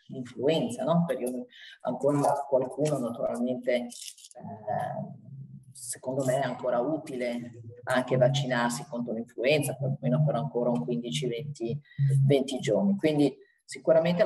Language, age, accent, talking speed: Italian, 30-49, native, 100 wpm